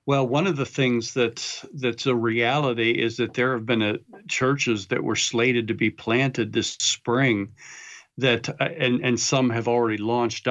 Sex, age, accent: male, 50-69, American